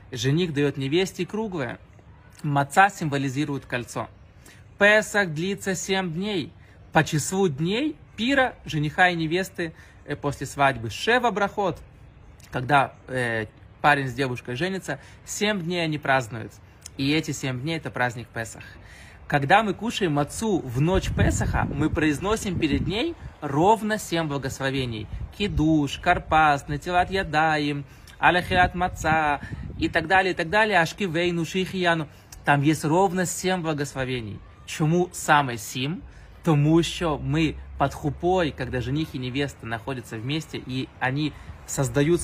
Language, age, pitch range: Russian, 20-39, 130-180 Hz